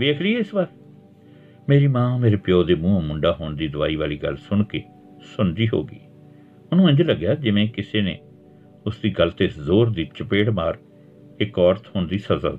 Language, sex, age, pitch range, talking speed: Punjabi, male, 60-79, 90-135 Hz, 175 wpm